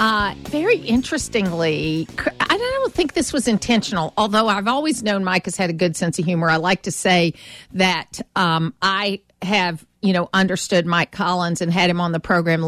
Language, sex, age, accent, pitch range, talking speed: English, female, 50-69, American, 180-230 Hz, 190 wpm